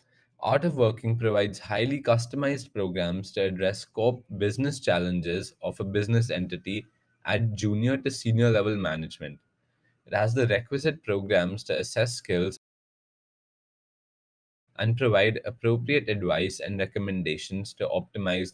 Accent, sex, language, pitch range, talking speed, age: Indian, male, English, 95-120 Hz, 125 wpm, 20-39